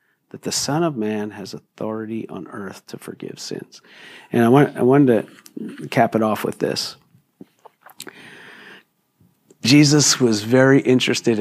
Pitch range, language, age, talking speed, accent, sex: 125-170 Hz, English, 50-69, 140 wpm, American, male